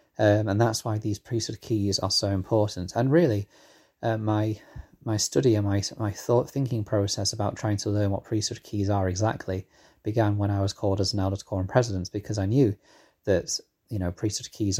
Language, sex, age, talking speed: English, male, 20-39, 200 wpm